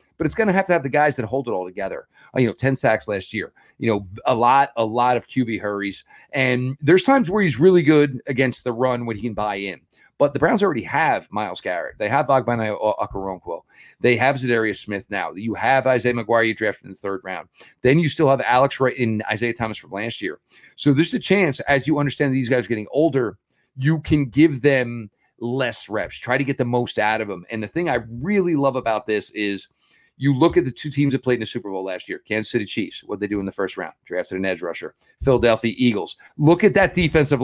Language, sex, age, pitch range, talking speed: English, male, 40-59, 110-155 Hz, 245 wpm